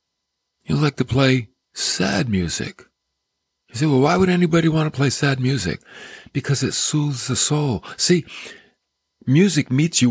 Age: 60-79